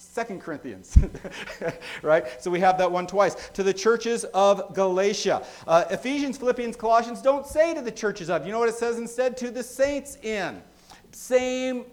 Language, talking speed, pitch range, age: English, 175 wpm, 175-230 Hz, 40-59